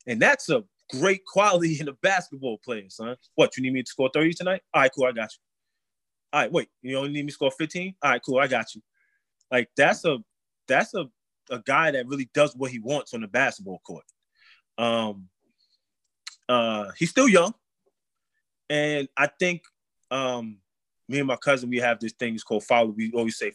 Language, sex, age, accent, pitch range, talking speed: English, male, 20-39, American, 125-160 Hz, 205 wpm